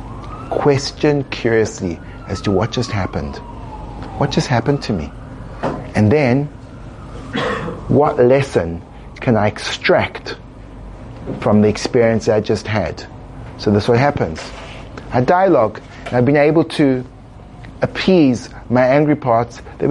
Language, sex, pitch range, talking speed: English, male, 110-135 Hz, 125 wpm